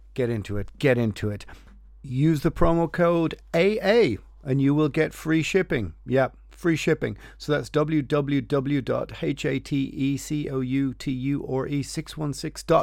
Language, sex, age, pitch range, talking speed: English, male, 40-59, 120-155 Hz, 110 wpm